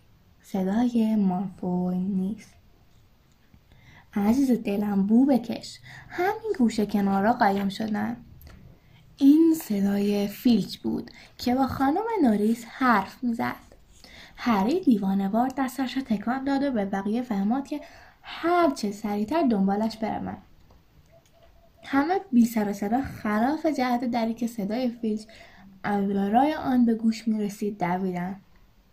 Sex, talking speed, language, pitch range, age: female, 115 wpm, Persian, 205-265 Hz, 10-29